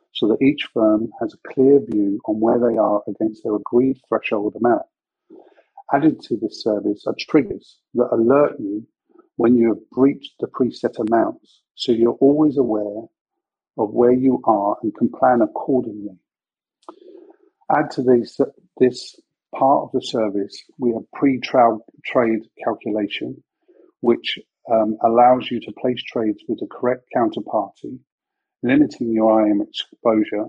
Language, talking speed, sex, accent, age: English, 140 wpm, male, British, 50-69